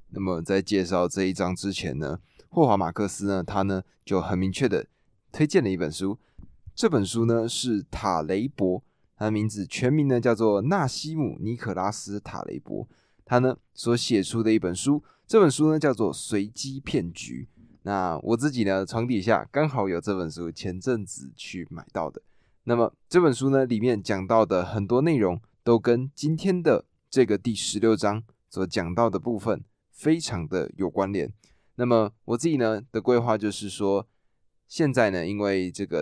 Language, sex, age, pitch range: Chinese, male, 20-39, 95-120 Hz